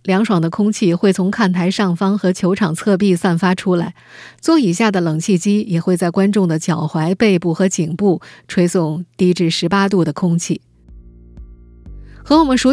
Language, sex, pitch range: Chinese, female, 170-225 Hz